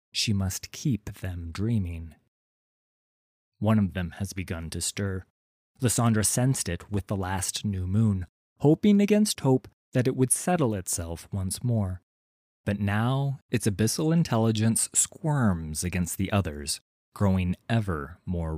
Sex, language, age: male, English, 30-49